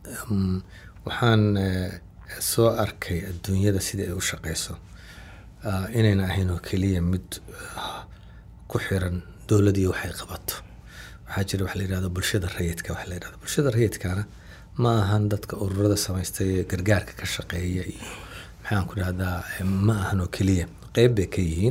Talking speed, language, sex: 70 wpm, English, male